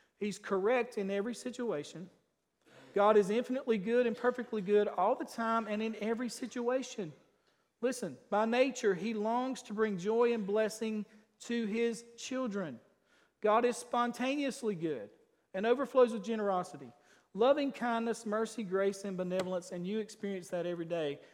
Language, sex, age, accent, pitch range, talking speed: English, male, 40-59, American, 195-235 Hz, 145 wpm